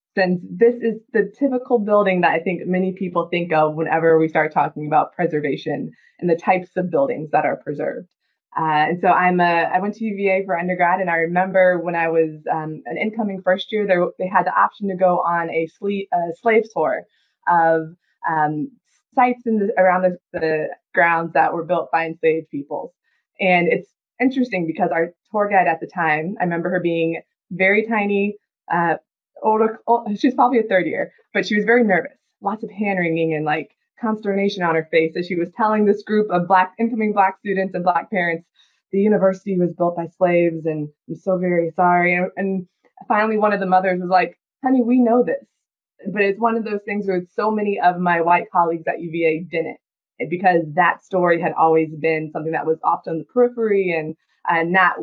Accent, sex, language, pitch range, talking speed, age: American, female, English, 165-205 Hz, 200 wpm, 20-39